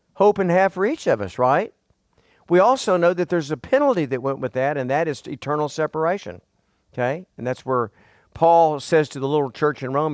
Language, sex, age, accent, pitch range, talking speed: English, male, 50-69, American, 130-185 Hz, 215 wpm